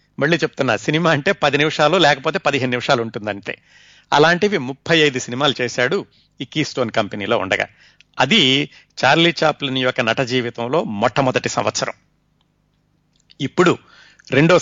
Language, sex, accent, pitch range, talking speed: Telugu, male, native, 130-160 Hz, 125 wpm